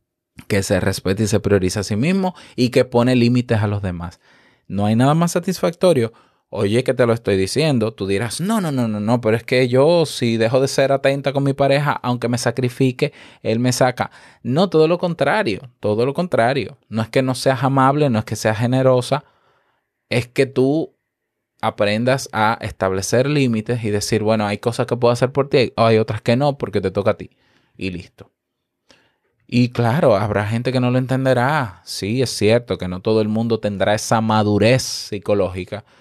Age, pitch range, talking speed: 20-39, 105-130 Hz, 195 wpm